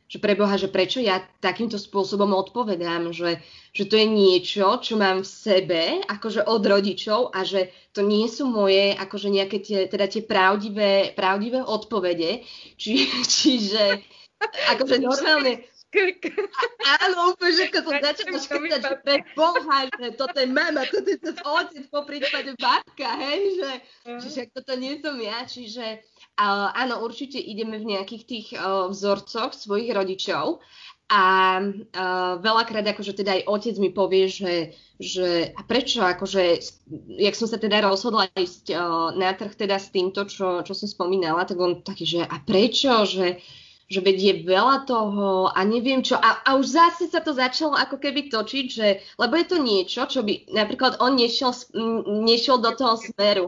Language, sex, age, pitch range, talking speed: Slovak, female, 20-39, 195-260 Hz, 155 wpm